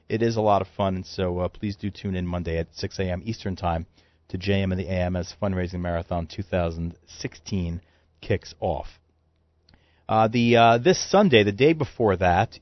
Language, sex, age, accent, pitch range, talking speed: English, male, 40-59, American, 90-110 Hz, 185 wpm